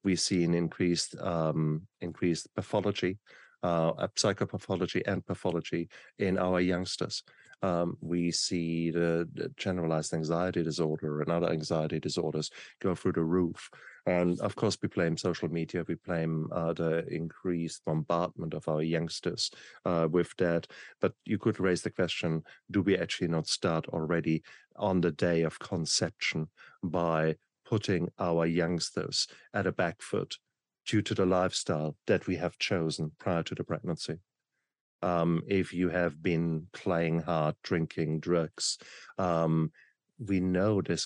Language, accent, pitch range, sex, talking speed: English, German, 80-90 Hz, male, 145 wpm